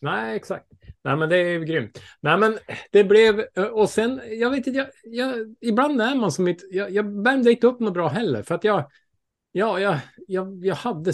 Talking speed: 215 wpm